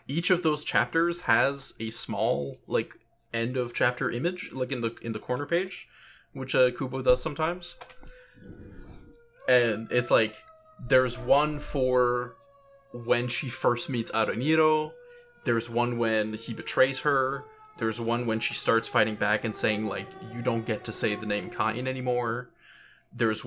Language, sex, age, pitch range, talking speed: English, male, 20-39, 115-140 Hz, 155 wpm